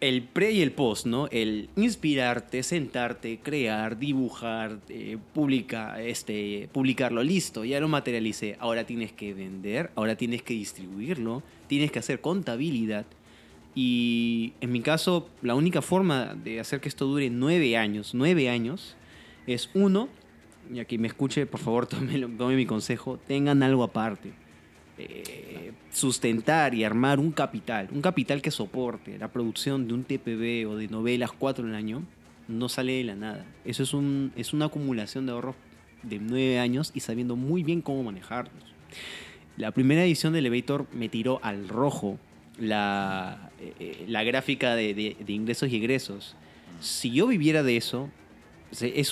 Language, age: Spanish, 20-39